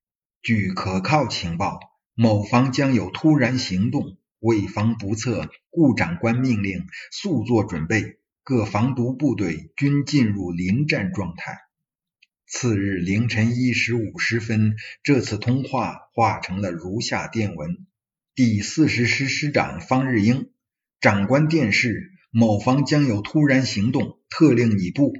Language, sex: Chinese, male